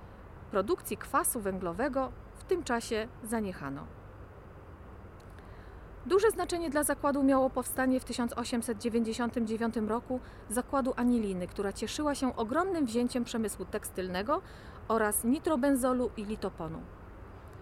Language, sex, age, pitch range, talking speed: Polish, female, 30-49, 210-275 Hz, 100 wpm